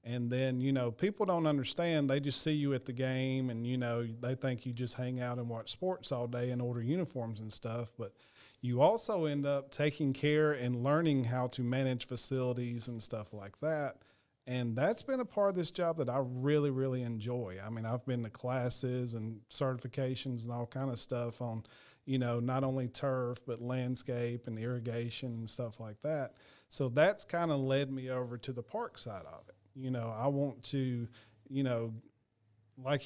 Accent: American